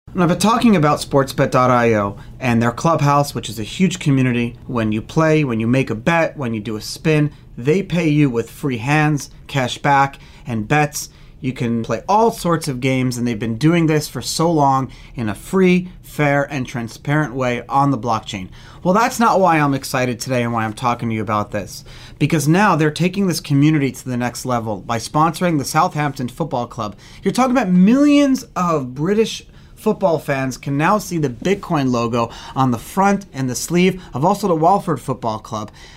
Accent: American